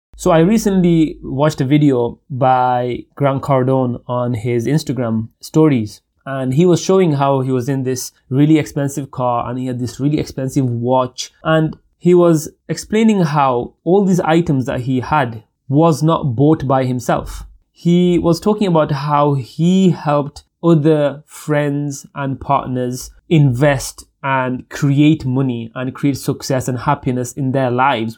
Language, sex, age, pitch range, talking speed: English, male, 20-39, 130-160 Hz, 150 wpm